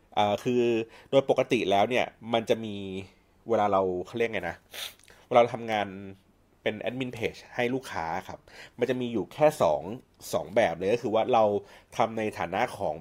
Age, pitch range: 30-49, 95-125 Hz